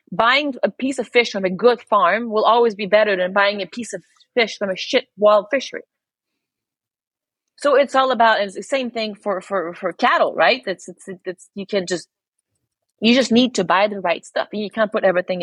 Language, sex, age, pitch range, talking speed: English, female, 30-49, 185-235 Hz, 215 wpm